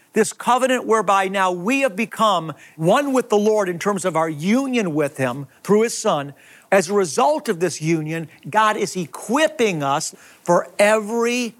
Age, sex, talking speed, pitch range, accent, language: 50-69, male, 170 wpm, 175-220 Hz, American, English